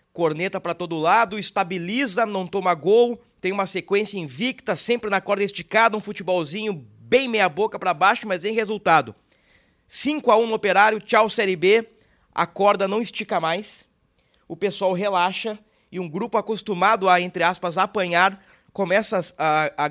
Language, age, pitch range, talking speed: Portuguese, 20-39, 180-215 Hz, 155 wpm